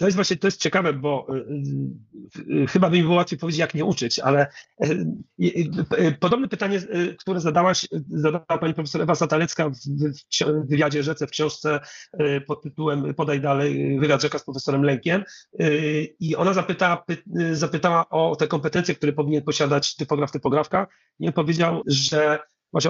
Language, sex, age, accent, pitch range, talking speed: Polish, male, 40-59, native, 150-175 Hz, 185 wpm